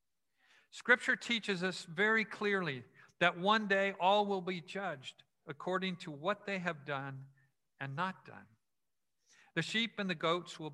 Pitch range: 145-195 Hz